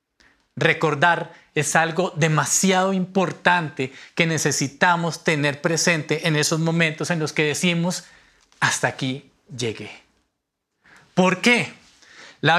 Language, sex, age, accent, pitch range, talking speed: Spanish, male, 40-59, Colombian, 165-220 Hz, 105 wpm